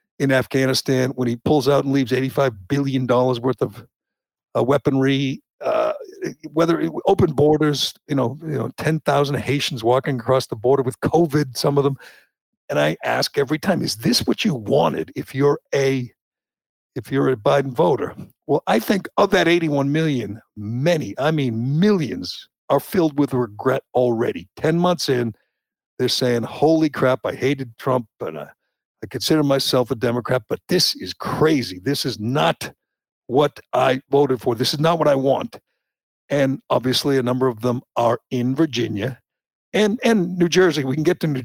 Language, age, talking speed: English, 60-79, 170 wpm